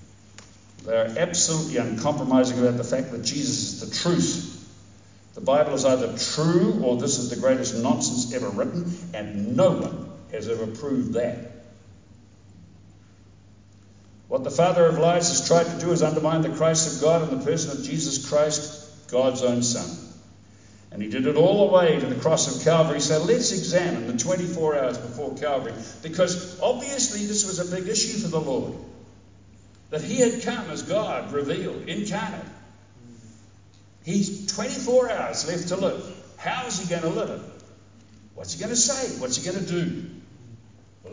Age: 60-79